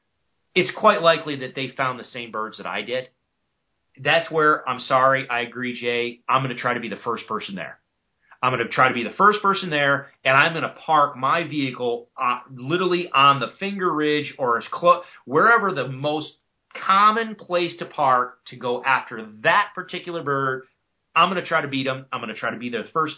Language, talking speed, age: English, 215 wpm, 30-49